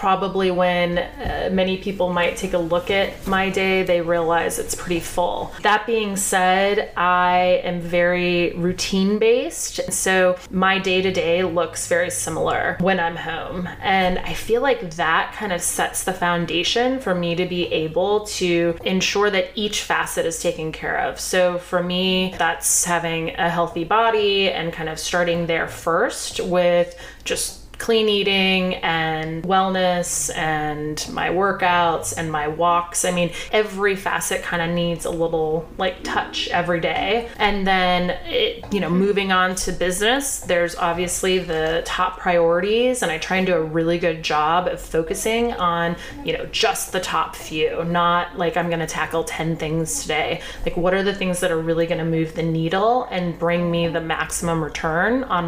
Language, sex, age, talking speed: English, female, 20-39, 170 wpm